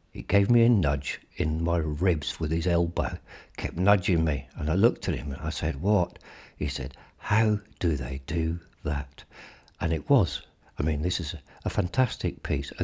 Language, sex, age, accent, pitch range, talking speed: English, male, 60-79, British, 75-95 Hz, 185 wpm